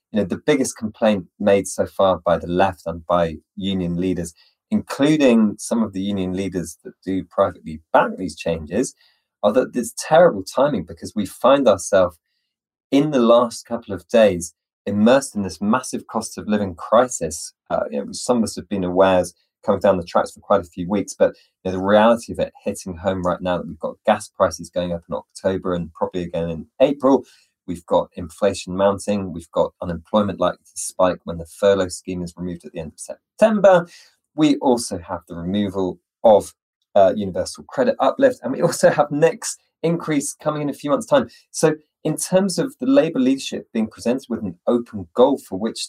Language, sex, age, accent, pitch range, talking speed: English, male, 20-39, British, 90-150 Hz, 190 wpm